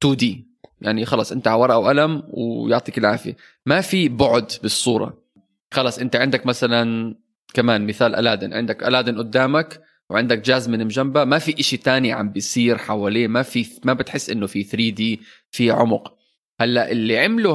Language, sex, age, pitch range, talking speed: Arabic, male, 20-39, 115-170 Hz, 155 wpm